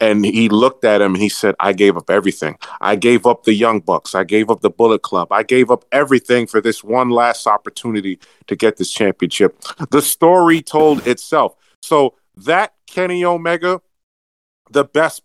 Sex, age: male, 40-59